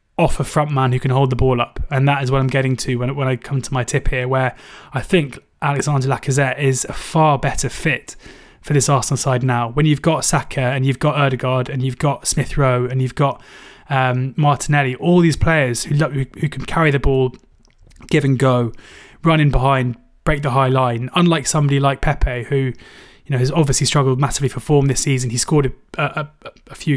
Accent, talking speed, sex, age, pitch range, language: British, 220 wpm, male, 20-39, 130-145 Hz, English